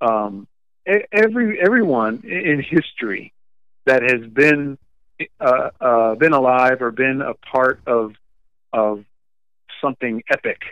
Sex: male